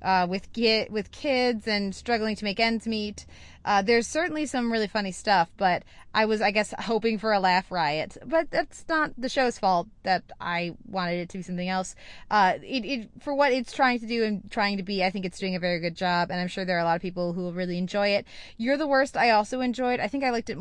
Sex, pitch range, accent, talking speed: female, 190-240 Hz, American, 255 wpm